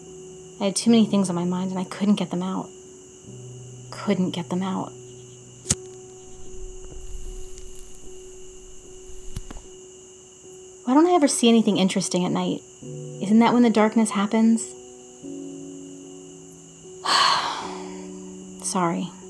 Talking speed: 105 wpm